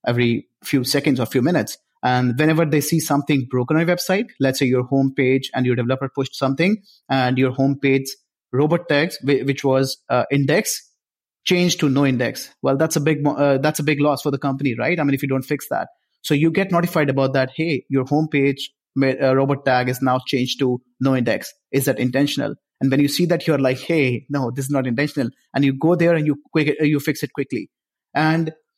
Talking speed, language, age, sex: 215 wpm, English, 30-49, male